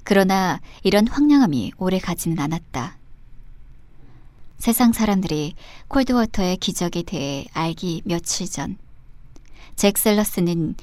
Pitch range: 130-205 Hz